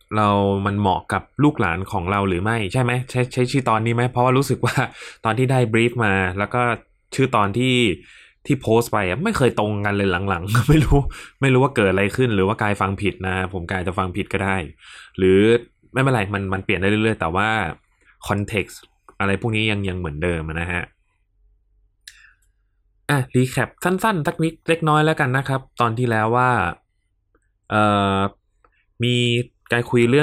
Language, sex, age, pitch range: Thai, male, 20-39, 95-120 Hz